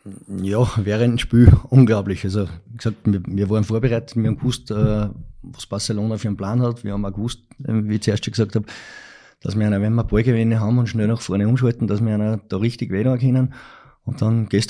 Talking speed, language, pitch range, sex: 220 wpm, German, 105-125 Hz, male